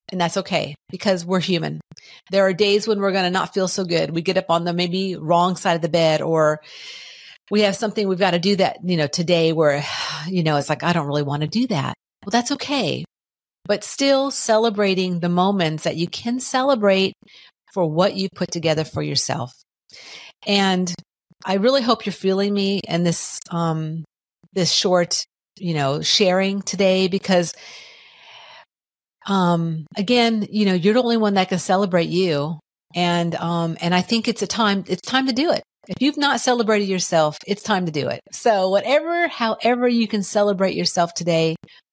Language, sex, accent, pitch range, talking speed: English, female, American, 170-210 Hz, 185 wpm